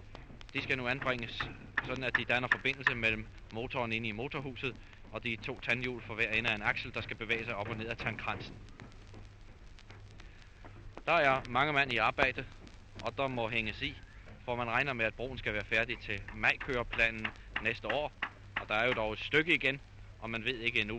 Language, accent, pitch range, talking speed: Danish, native, 105-125 Hz, 200 wpm